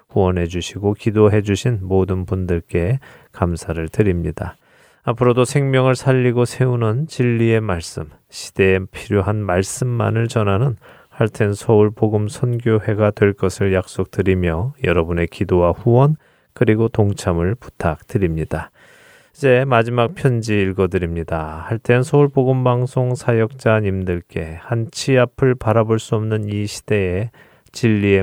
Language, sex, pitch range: Korean, male, 95-120 Hz